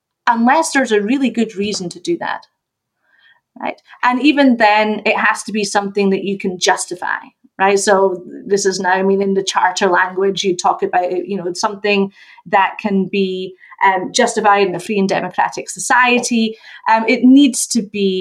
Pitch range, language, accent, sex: 195-250 Hz, English, British, female